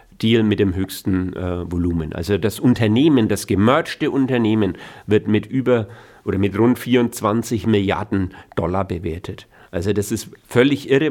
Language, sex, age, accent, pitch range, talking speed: German, male, 40-59, German, 105-125 Hz, 145 wpm